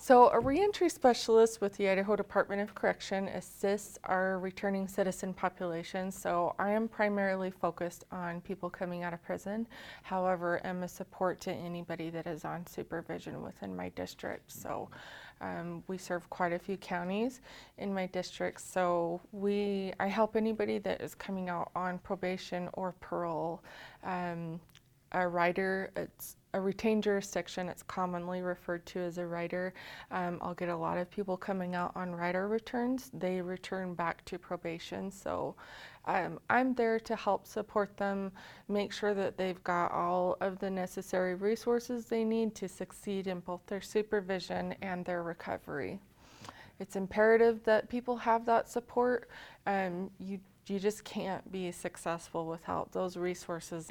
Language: English